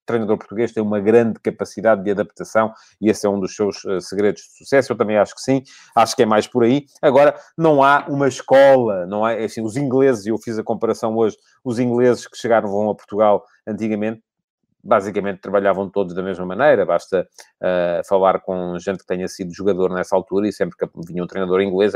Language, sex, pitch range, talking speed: Portuguese, male, 95-120 Hz, 215 wpm